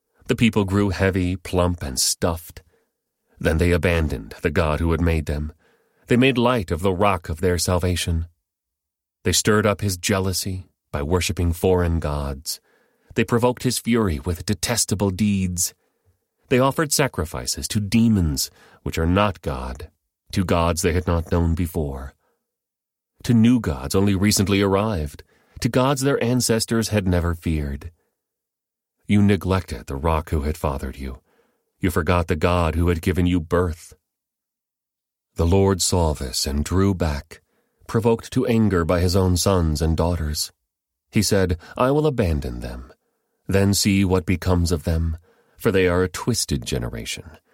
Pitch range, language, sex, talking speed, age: 80-100 Hz, English, male, 155 wpm, 30-49